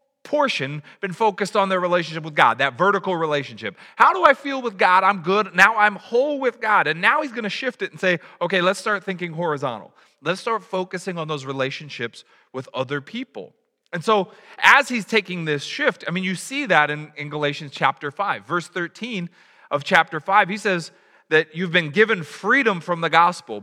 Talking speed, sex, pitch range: 200 wpm, male, 145-200 Hz